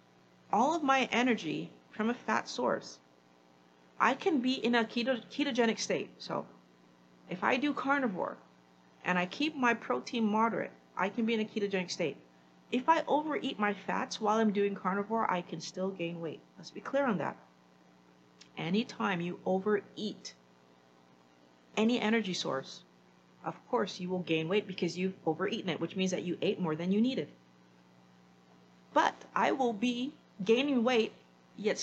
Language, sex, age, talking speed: English, female, 40-59, 160 wpm